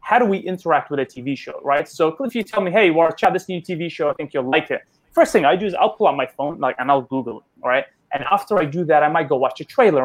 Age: 20-39